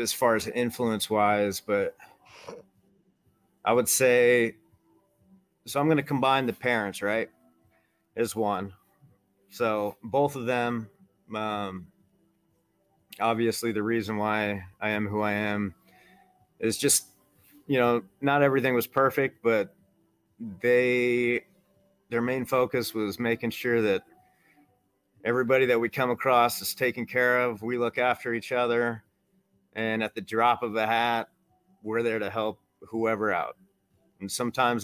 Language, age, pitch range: English, 30-49, 105-135 Hz